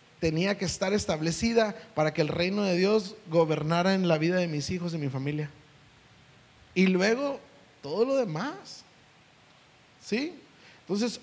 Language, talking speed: Spanish, 145 wpm